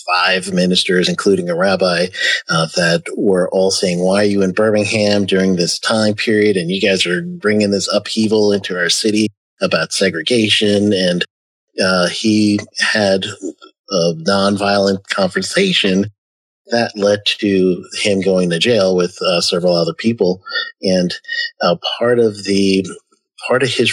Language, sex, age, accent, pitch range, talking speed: English, male, 40-59, American, 95-115 Hz, 145 wpm